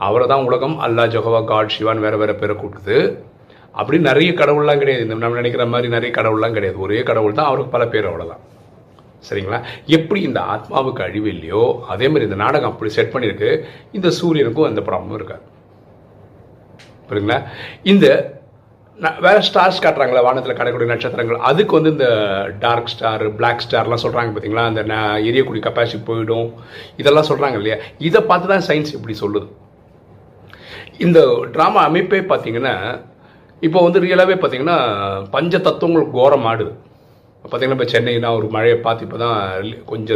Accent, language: native, Tamil